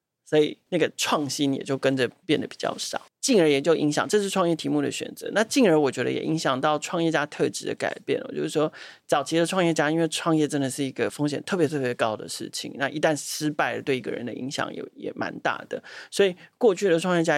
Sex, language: male, Chinese